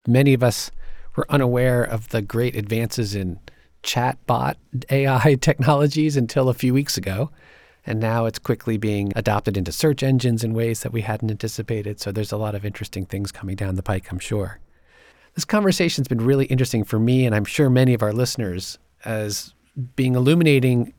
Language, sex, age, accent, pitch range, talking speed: English, male, 40-59, American, 105-130 Hz, 185 wpm